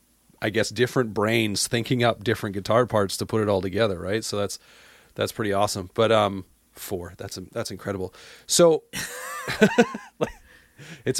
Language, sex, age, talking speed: English, male, 30-49, 150 wpm